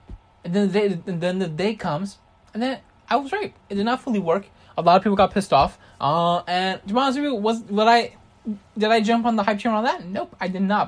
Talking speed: 270 wpm